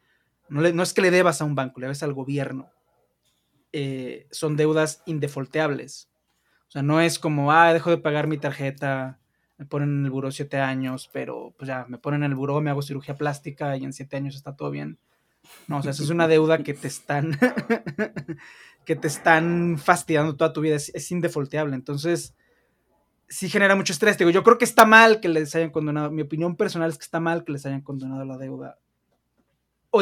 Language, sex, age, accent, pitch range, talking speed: Spanish, male, 20-39, Mexican, 140-170 Hz, 210 wpm